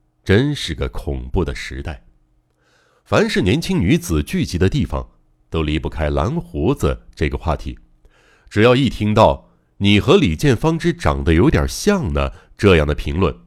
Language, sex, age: Chinese, male, 60-79